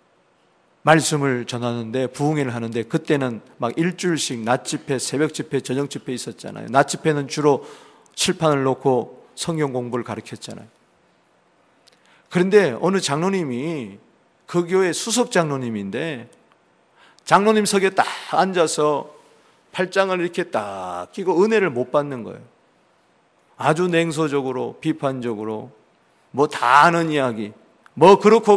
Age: 40-59